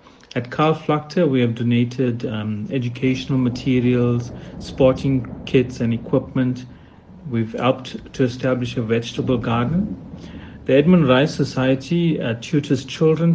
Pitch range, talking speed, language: 120-140 Hz, 120 wpm, English